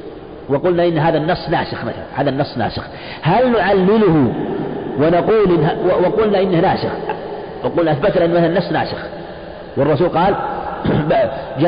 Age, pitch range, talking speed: 50-69, 160-195 Hz, 135 wpm